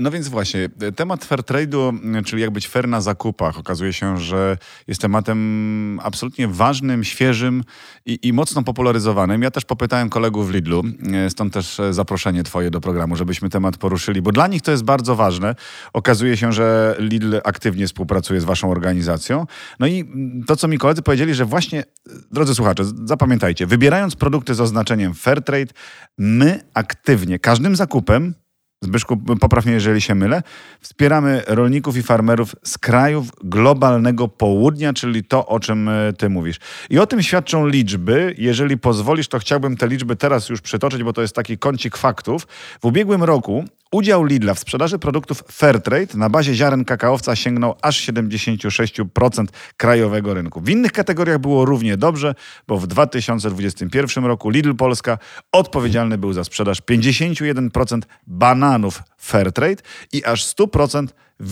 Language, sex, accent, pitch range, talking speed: Polish, male, native, 105-140 Hz, 150 wpm